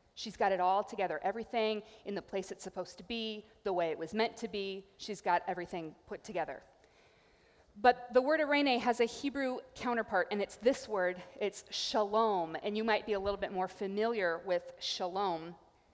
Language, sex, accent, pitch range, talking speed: English, female, American, 190-235 Hz, 190 wpm